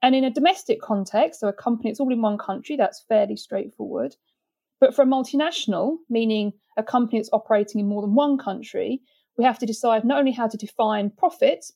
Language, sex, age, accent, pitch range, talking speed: English, female, 40-59, British, 215-275 Hz, 205 wpm